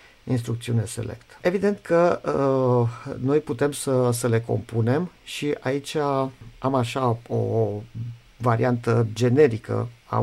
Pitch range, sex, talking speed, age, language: 115-130 Hz, male, 115 wpm, 50-69, Romanian